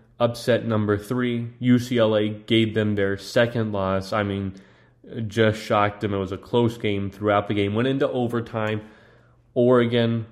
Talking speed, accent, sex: 150 wpm, American, male